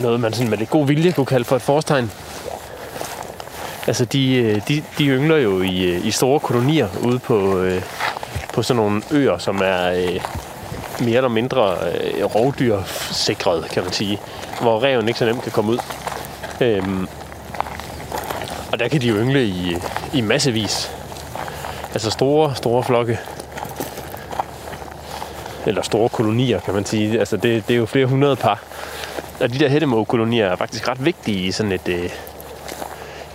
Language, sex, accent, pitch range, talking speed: Danish, male, native, 95-125 Hz, 150 wpm